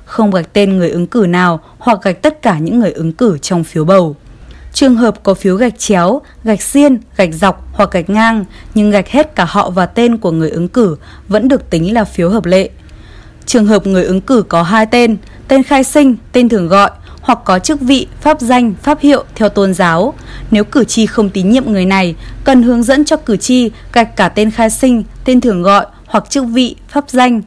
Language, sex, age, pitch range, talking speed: Vietnamese, female, 20-39, 190-245 Hz, 220 wpm